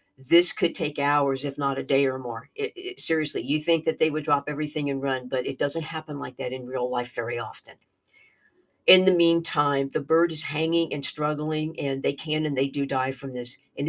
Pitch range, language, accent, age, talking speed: 135-160 Hz, English, American, 50-69, 215 wpm